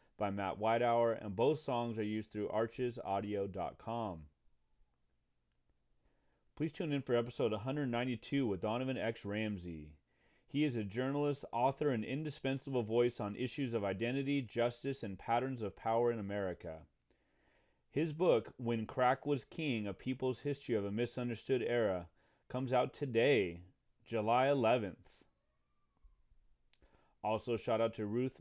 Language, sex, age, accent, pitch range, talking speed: English, male, 30-49, American, 100-130 Hz, 130 wpm